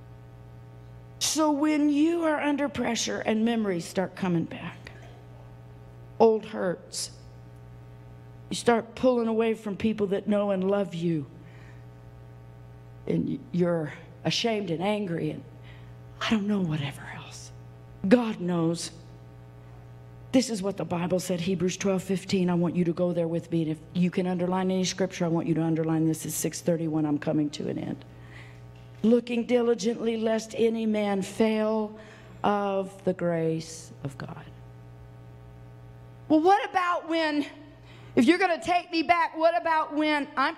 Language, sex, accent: English, female, American